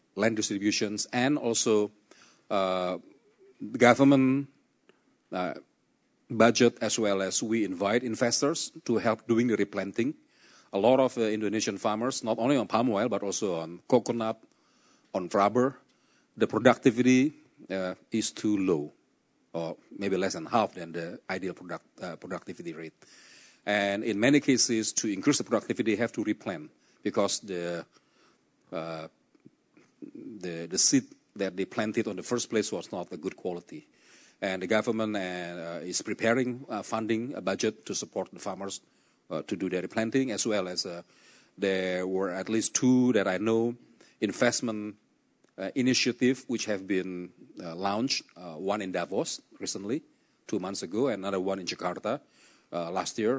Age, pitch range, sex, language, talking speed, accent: 40-59, 95-125 Hz, male, English, 155 wpm, Indonesian